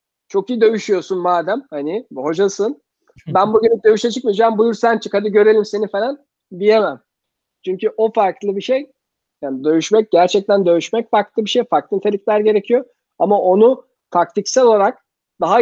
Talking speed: 145 wpm